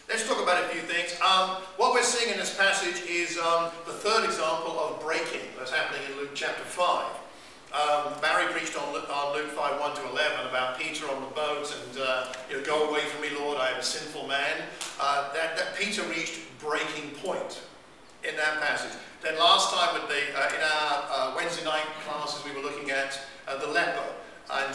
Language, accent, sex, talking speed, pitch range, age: English, British, male, 205 wpm, 140-165 Hz, 50-69